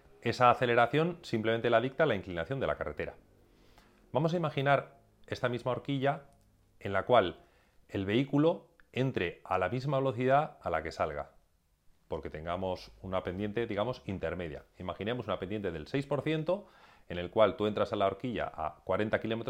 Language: Spanish